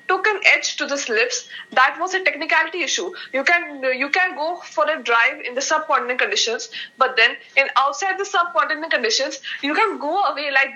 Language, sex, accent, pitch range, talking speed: English, female, Indian, 270-350 Hz, 190 wpm